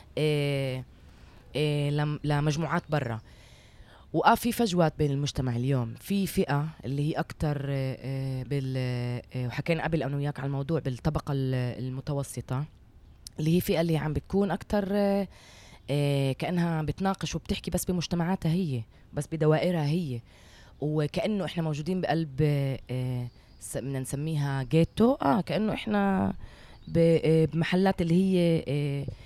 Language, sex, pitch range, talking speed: Arabic, female, 135-170 Hz, 115 wpm